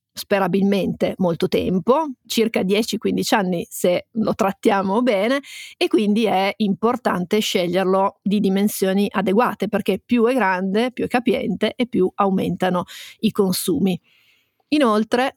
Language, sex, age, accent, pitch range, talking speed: Italian, female, 30-49, native, 195-235 Hz, 120 wpm